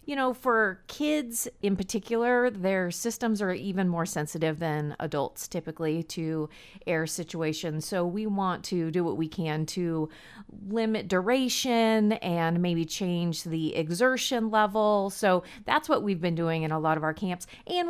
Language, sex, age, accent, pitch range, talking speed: English, female, 30-49, American, 165-215 Hz, 160 wpm